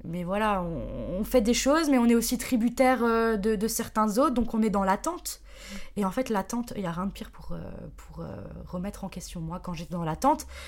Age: 20-39